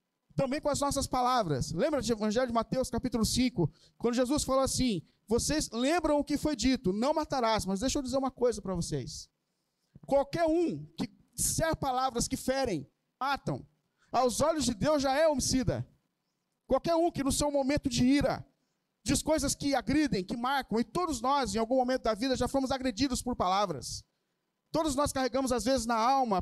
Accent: Brazilian